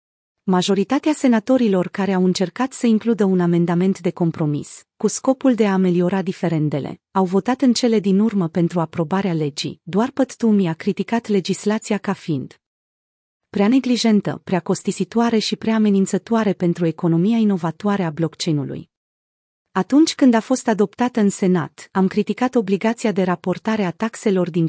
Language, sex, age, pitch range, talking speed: Romanian, female, 30-49, 175-220 Hz, 145 wpm